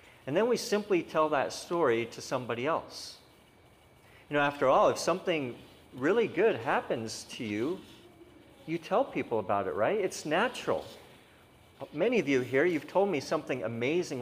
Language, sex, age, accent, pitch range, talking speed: English, male, 50-69, American, 115-150 Hz, 160 wpm